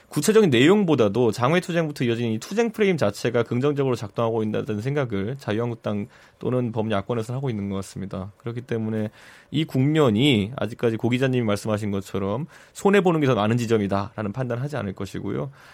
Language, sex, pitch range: Korean, male, 105-145 Hz